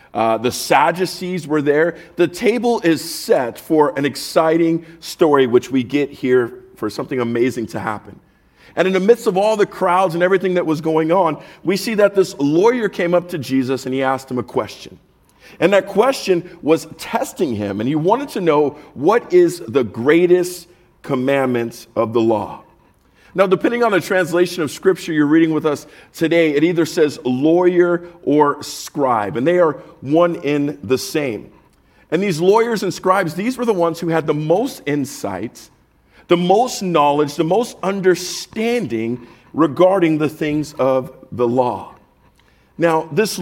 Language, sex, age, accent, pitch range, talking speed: English, male, 40-59, American, 140-190 Hz, 170 wpm